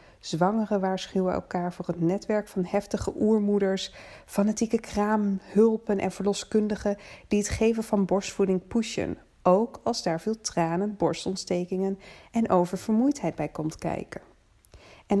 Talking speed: 120 wpm